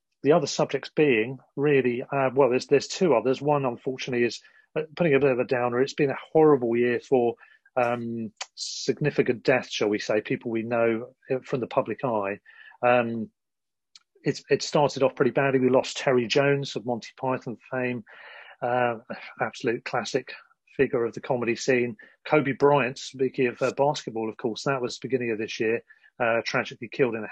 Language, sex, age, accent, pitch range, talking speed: English, male, 40-59, British, 120-135 Hz, 180 wpm